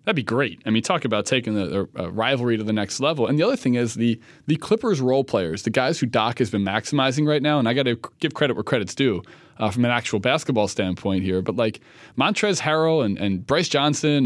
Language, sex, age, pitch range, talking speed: English, male, 20-39, 110-150 Hz, 245 wpm